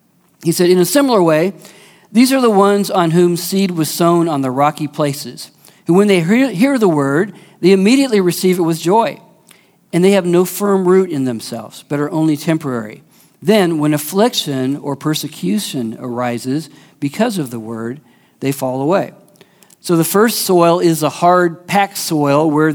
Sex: male